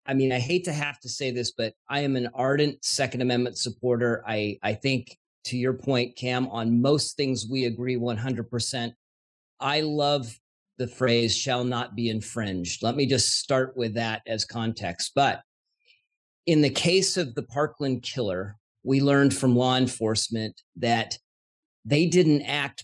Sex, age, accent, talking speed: male, 40-59, American, 170 wpm